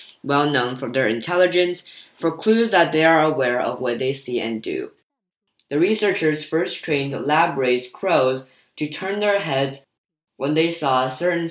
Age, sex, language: 10-29, female, Chinese